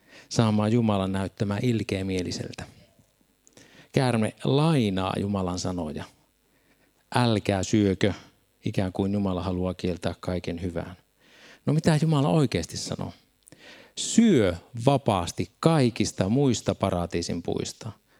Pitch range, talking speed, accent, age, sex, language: 95-130 Hz, 95 wpm, native, 50-69, male, Finnish